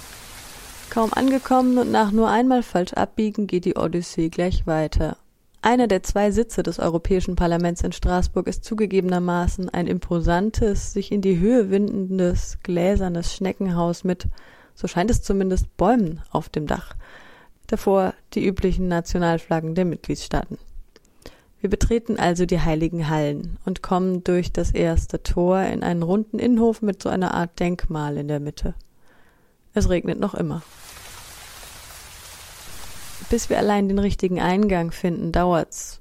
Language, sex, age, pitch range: German, female, 30-49, 165-205 Hz